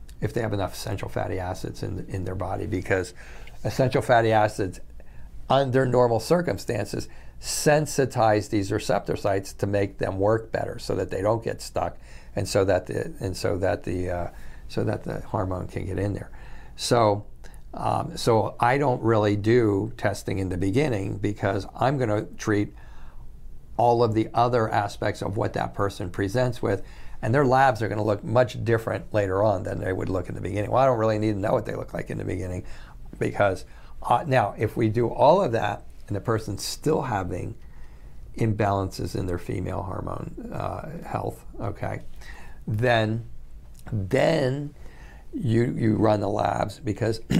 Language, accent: English, American